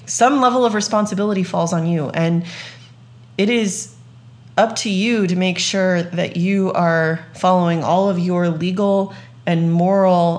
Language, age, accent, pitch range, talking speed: English, 30-49, American, 160-210 Hz, 150 wpm